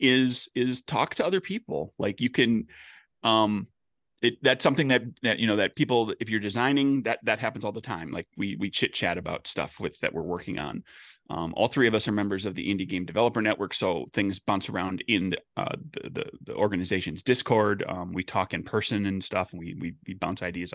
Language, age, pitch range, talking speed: English, 30-49, 95-130 Hz, 225 wpm